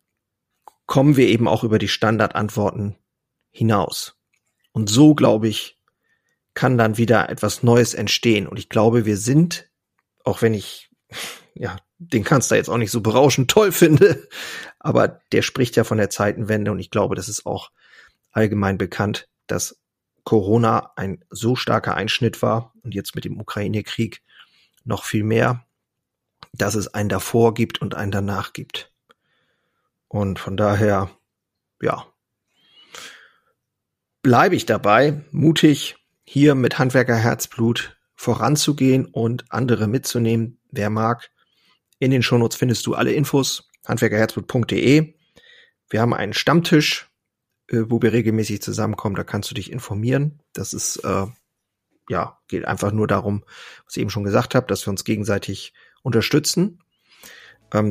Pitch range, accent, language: 105-130 Hz, German, German